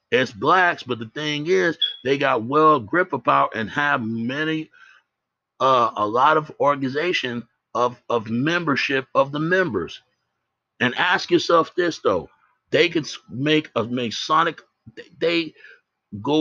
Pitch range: 115-150 Hz